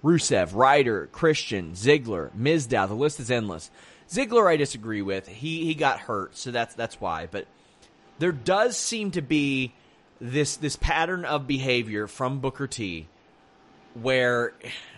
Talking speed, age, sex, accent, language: 145 wpm, 30-49, male, American, English